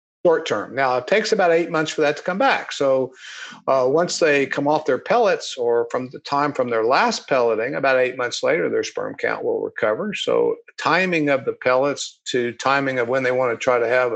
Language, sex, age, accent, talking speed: English, male, 50-69, American, 225 wpm